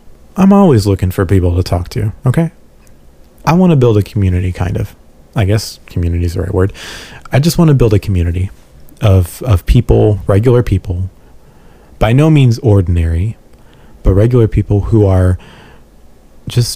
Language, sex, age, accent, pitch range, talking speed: English, male, 30-49, American, 95-120 Hz, 165 wpm